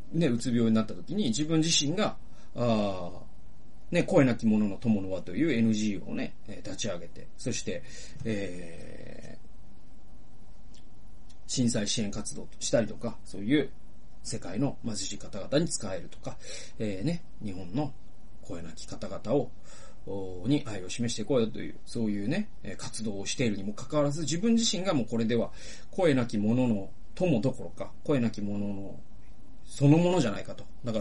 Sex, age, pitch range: male, 30-49, 105-140 Hz